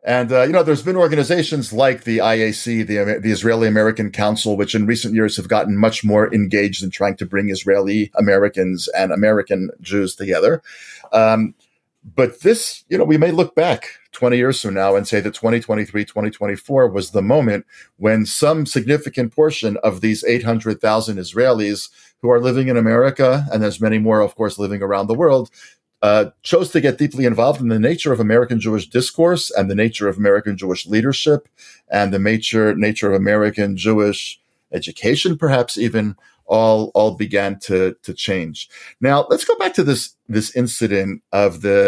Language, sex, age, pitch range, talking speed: English, male, 40-59, 105-125 Hz, 180 wpm